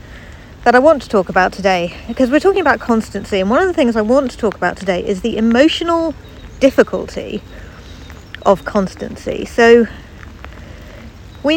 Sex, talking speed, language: female, 160 wpm, English